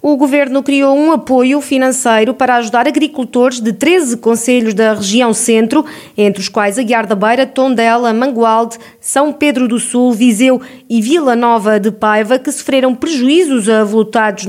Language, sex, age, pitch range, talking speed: Portuguese, female, 20-39, 225-265 Hz, 155 wpm